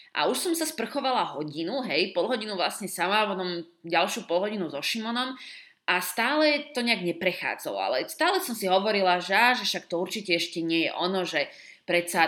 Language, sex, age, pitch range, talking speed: Slovak, female, 20-39, 180-255 Hz, 180 wpm